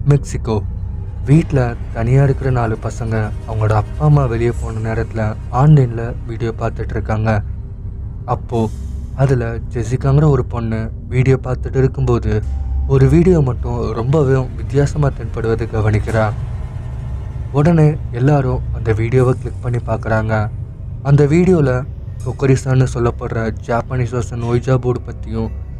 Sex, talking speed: male, 105 wpm